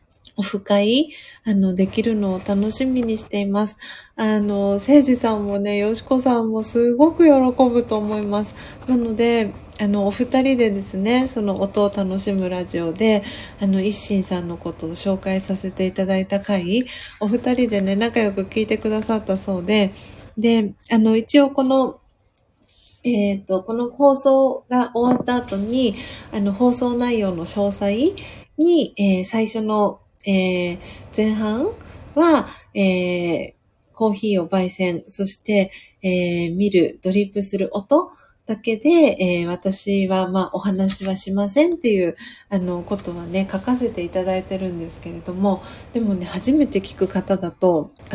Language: Japanese